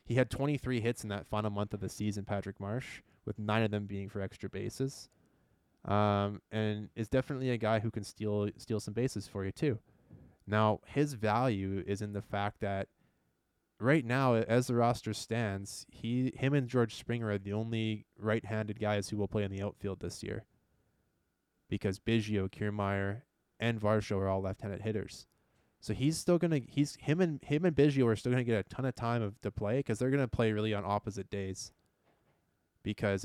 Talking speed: 195 wpm